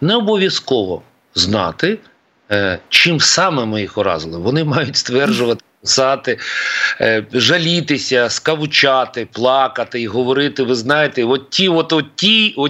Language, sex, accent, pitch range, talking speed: Ukrainian, male, native, 115-155 Hz, 115 wpm